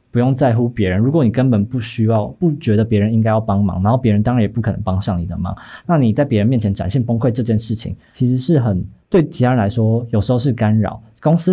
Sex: male